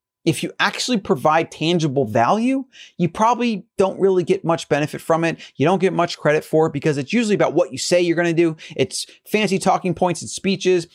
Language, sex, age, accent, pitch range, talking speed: English, male, 30-49, American, 140-190 Hz, 215 wpm